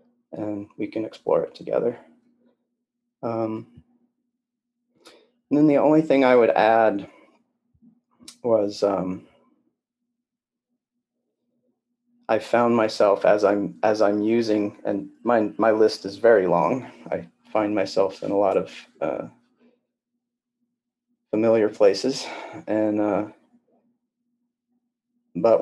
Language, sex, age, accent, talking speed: English, male, 30-49, American, 105 wpm